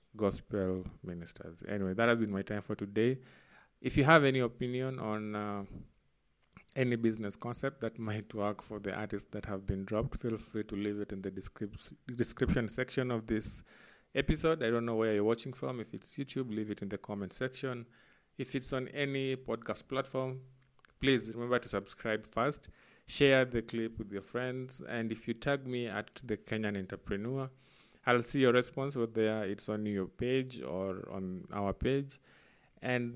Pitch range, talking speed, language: 100-125 Hz, 180 wpm, English